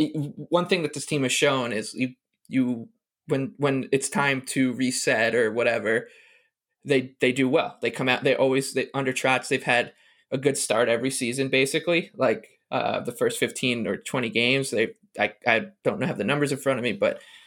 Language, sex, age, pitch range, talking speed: English, male, 20-39, 130-170 Hz, 200 wpm